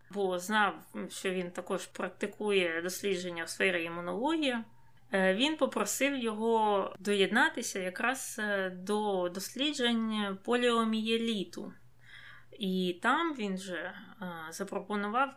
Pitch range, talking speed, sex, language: 185-230 Hz, 90 wpm, female, Ukrainian